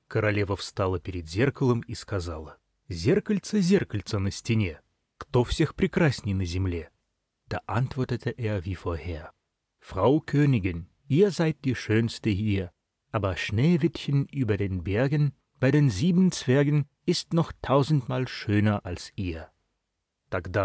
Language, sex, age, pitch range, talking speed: Russian, male, 30-49, 100-140 Hz, 120 wpm